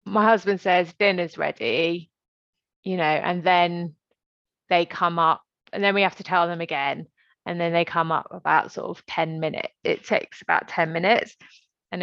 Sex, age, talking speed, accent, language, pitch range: female, 20-39, 180 wpm, British, English, 165-190 Hz